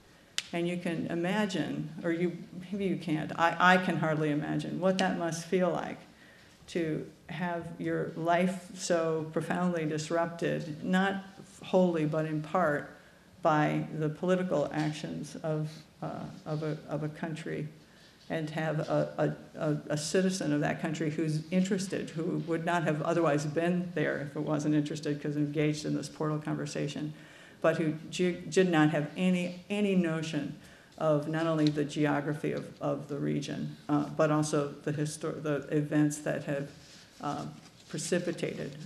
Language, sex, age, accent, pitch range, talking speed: English, female, 50-69, American, 150-180 Hz, 155 wpm